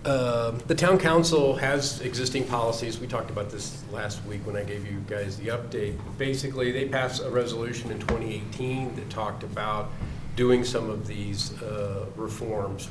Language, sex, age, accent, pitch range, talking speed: English, male, 40-59, American, 105-125 Hz, 165 wpm